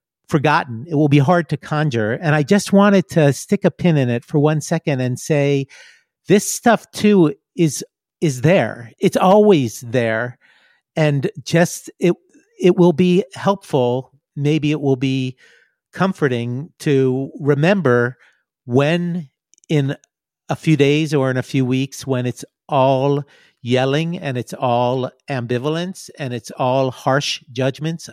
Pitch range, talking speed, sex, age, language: 125-160 Hz, 145 wpm, male, 50-69, English